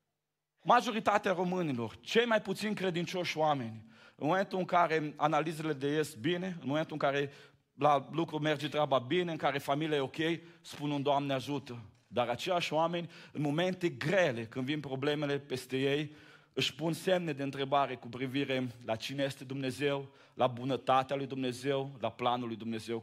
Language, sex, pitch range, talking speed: Romanian, male, 125-165 Hz, 165 wpm